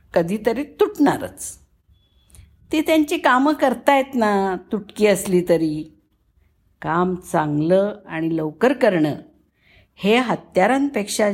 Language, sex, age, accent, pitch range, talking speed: Marathi, female, 50-69, native, 165-245 Hz, 100 wpm